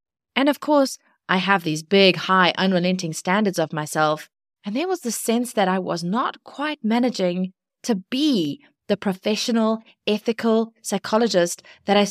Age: 20-39